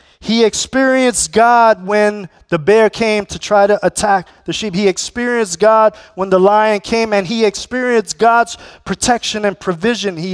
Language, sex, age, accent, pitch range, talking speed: English, male, 30-49, American, 165-230 Hz, 165 wpm